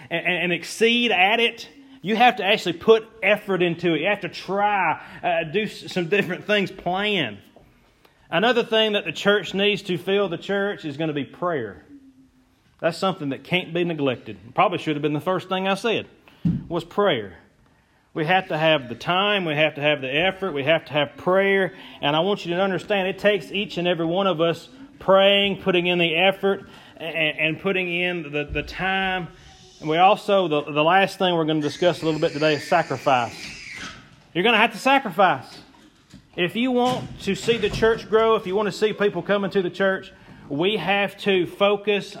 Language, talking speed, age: English, 200 wpm, 30-49